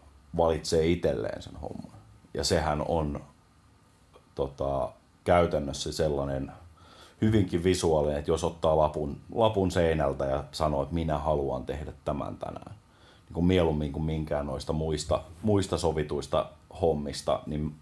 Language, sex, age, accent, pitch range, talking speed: Finnish, male, 30-49, native, 75-90 Hz, 120 wpm